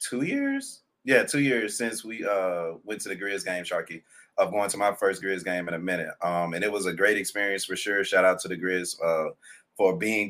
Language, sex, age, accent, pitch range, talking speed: English, male, 30-49, American, 90-110 Hz, 240 wpm